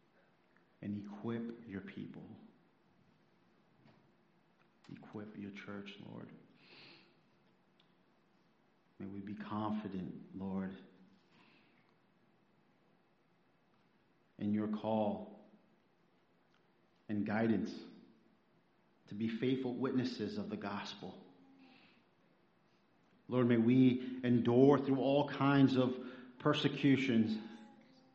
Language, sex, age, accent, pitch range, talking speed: English, male, 40-59, American, 95-115 Hz, 70 wpm